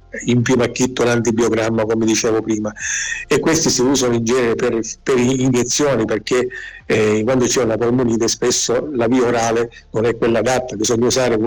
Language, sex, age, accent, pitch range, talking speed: Italian, male, 50-69, native, 115-125 Hz, 165 wpm